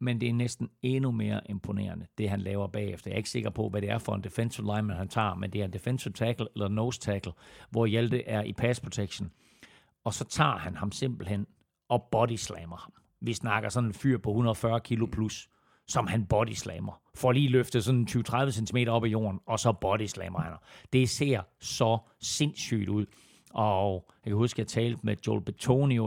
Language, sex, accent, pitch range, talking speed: Danish, male, native, 105-120 Hz, 210 wpm